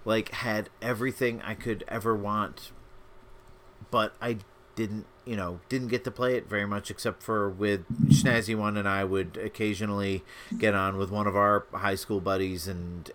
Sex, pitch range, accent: male, 100-125 Hz, American